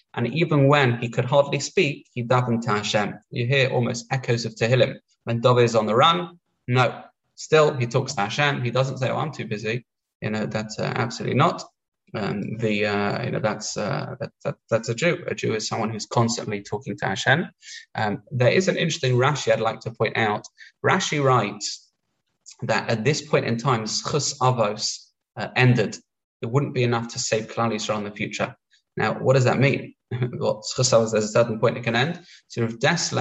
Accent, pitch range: British, 110-135 Hz